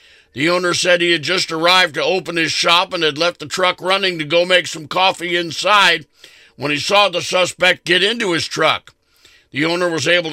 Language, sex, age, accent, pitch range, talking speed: English, male, 60-79, American, 160-180 Hz, 210 wpm